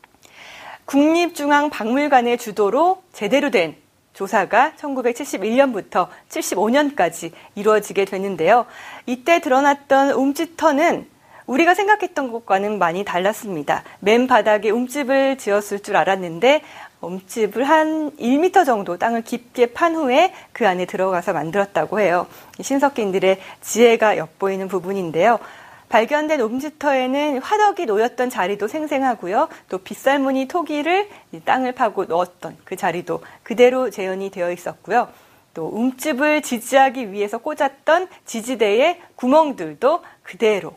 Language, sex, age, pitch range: Korean, female, 40-59, 200-290 Hz